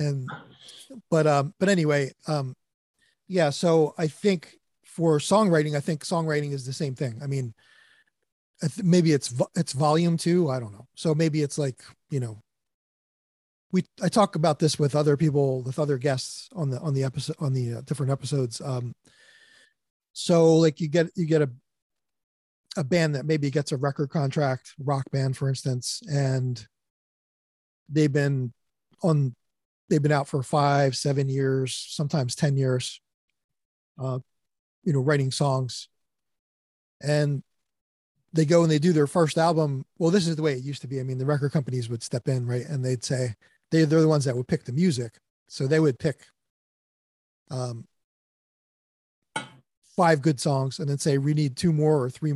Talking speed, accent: 175 wpm, American